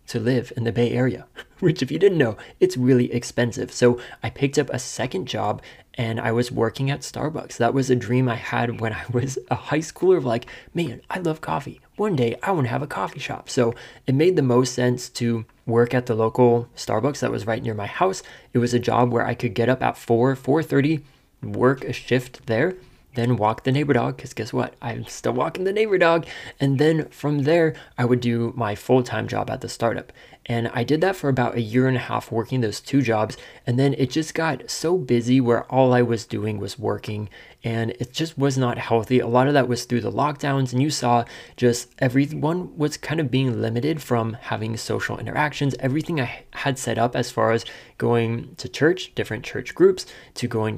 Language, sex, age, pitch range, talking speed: English, male, 20-39, 120-140 Hz, 225 wpm